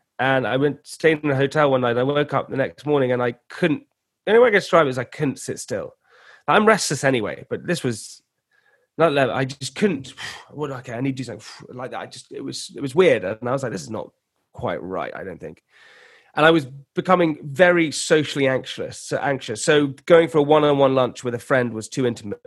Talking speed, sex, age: 235 wpm, male, 30-49